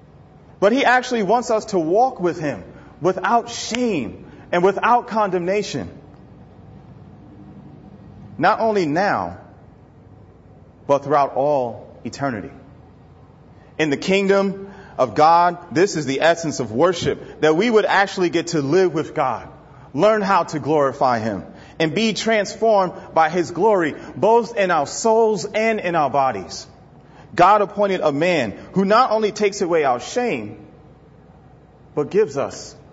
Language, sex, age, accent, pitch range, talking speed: English, male, 30-49, American, 140-195 Hz, 135 wpm